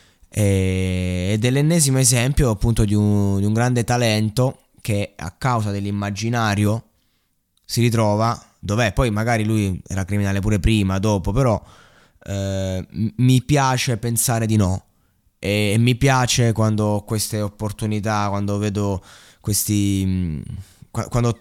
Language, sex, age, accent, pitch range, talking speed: Italian, male, 20-39, native, 105-130 Hz, 120 wpm